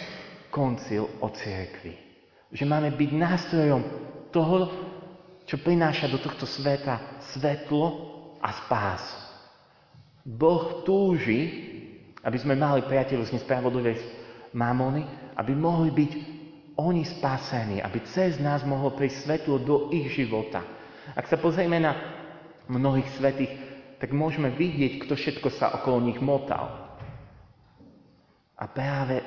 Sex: male